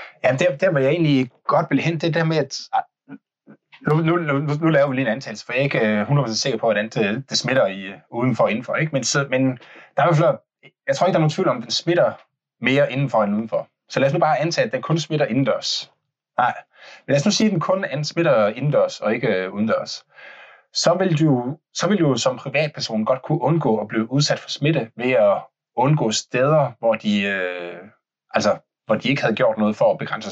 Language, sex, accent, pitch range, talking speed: Danish, male, native, 115-165 Hz, 230 wpm